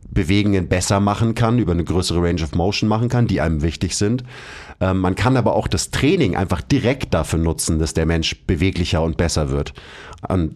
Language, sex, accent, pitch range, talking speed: German, male, German, 85-115 Hz, 200 wpm